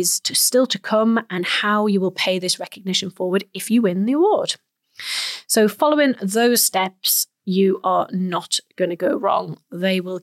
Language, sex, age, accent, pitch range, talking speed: English, female, 30-49, British, 180-225 Hz, 170 wpm